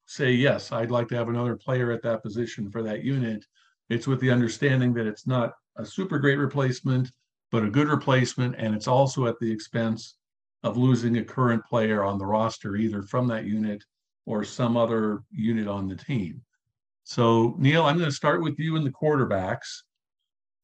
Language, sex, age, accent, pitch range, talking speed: English, male, 50-69, American, 115-135 Hz, 190 wpm